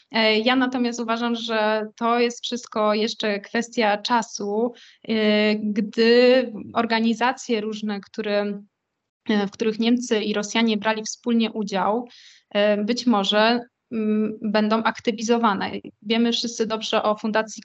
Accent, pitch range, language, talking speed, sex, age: native, 210-240 Hz, Polish, 100 wpm, female, 20-39